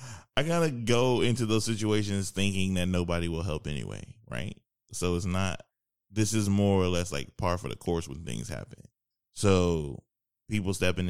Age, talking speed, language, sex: 20-39, 175 wpm, English, male